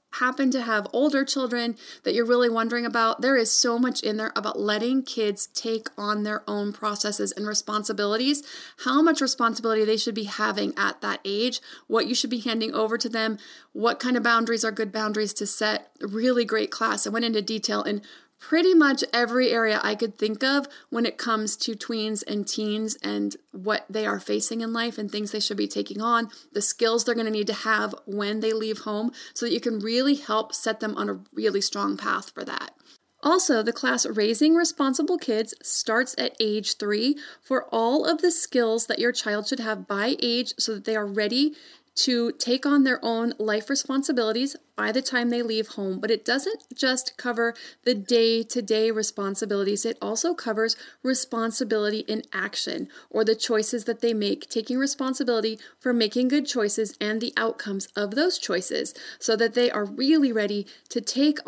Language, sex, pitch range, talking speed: English, female, 215-255 Hz, 190 wpm